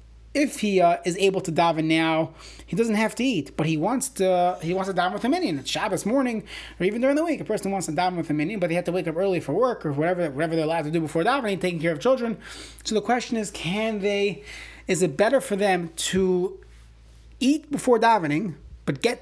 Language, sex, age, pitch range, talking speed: English, male, 30-49, 160-205 Hz, 250 wpm